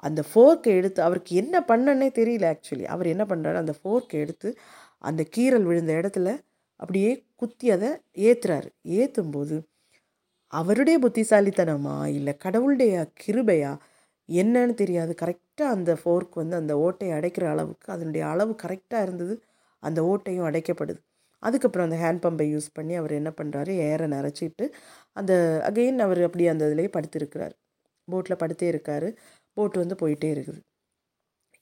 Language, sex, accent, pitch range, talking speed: Tamil, female, native, 165-210 Hz, 135 wpm